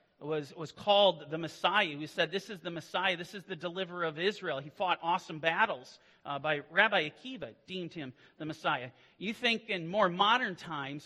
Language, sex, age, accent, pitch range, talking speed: English, male, 40-59, American, 155-235 Hz, 190 wpm